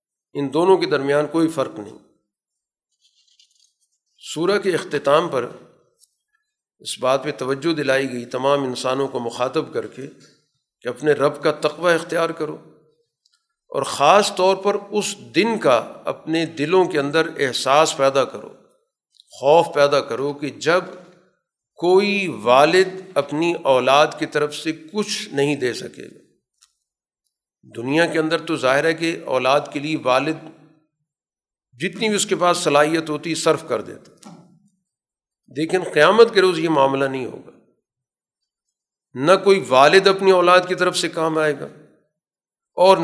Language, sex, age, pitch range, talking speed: Urdu, male, 50-69, 145-185 Hz, 140 wpm